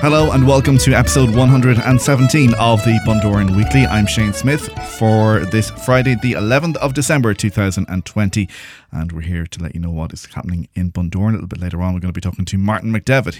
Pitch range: 90-115 Hz